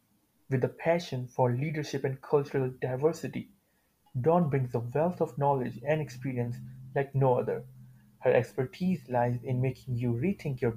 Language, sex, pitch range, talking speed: English, male, 120-150 Hz, 150 wpm